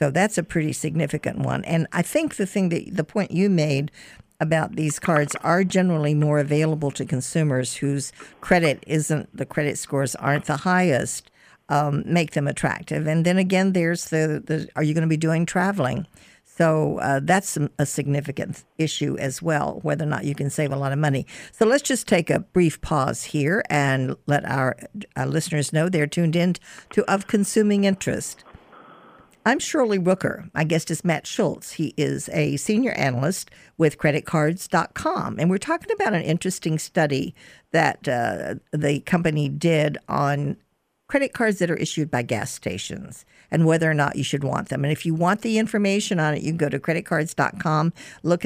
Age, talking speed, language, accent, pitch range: 60-79, 185 wpm, English, American, 145-180 Hz